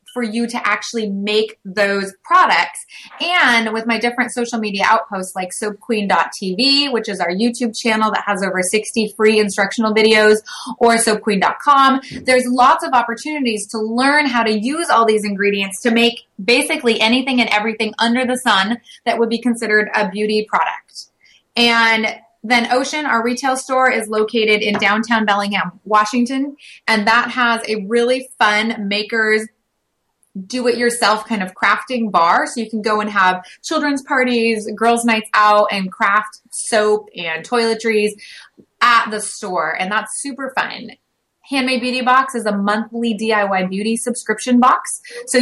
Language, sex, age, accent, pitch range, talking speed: English, female, 20-39, American, 210-240 Hz, 155 wpm